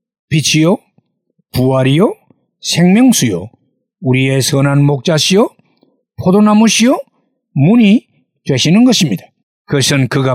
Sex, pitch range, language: male, 135-220 Hz, Korean